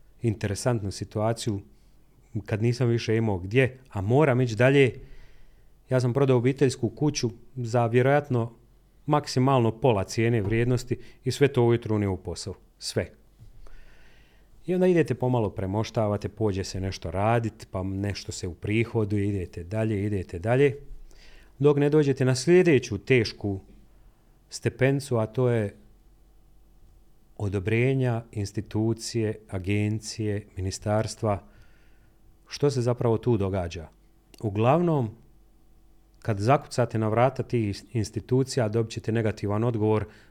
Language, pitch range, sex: Croatian, 105-125 Hz, male